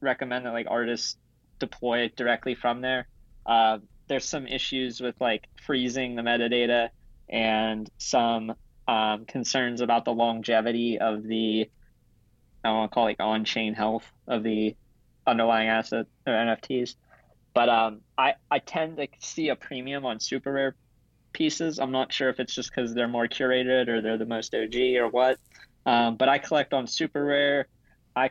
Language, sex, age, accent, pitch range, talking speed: English, male, 20-39, American, 115-135 Hz, 170 wpm